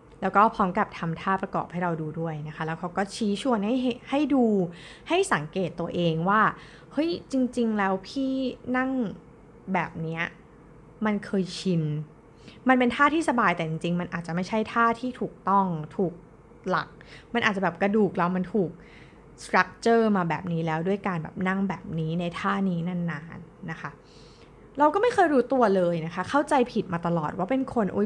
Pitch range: 165-240 Hz